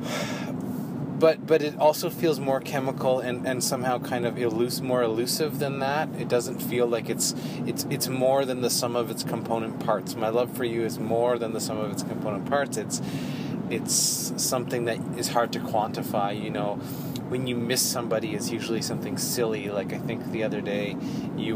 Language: English